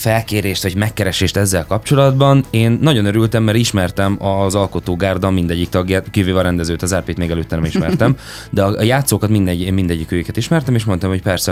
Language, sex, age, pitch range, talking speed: Hungarian, male, 20-39, 90-110 Hz, 170 wpm